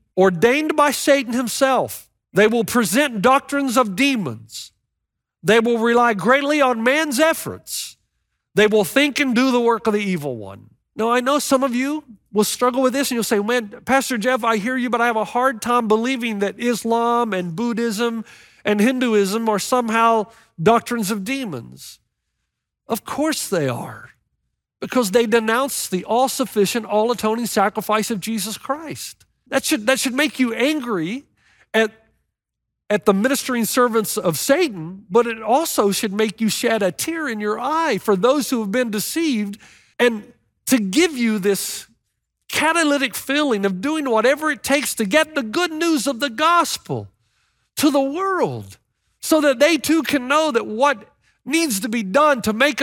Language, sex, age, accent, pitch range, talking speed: English, male, 50-69, American, 215-275 Hz, 165 wpm